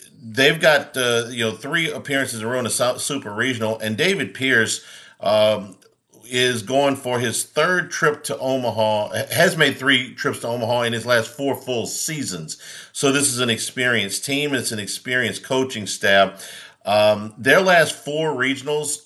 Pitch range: 100-125 Hz